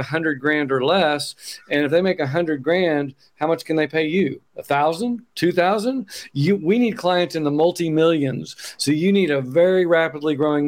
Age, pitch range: 50-69, 145-170 Hz